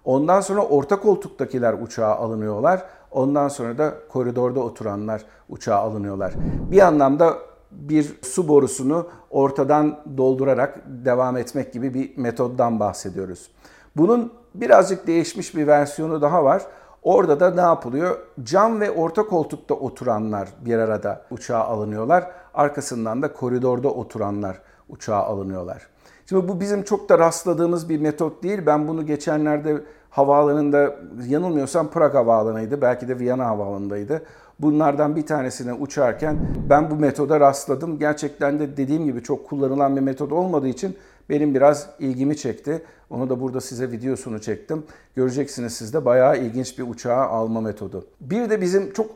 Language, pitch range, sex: Turkish, 120-160 Hz, male